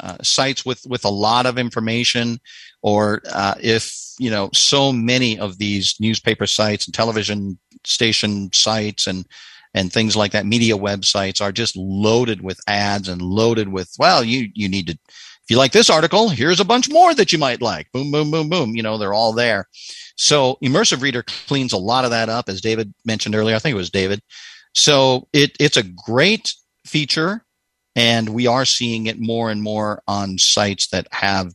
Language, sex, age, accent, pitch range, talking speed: English, male, 50-69, American, 95-120 Hz, 190 wpm